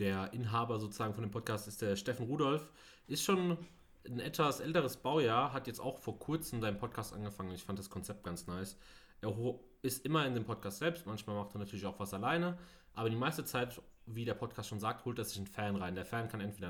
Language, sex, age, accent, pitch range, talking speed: German, male, 30-49, German, 100-125 Hz, 225 wpm